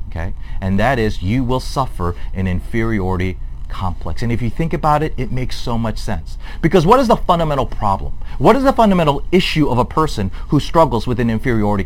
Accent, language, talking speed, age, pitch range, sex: American, English, 195 wpm, 40-59, 90-135 Hz, male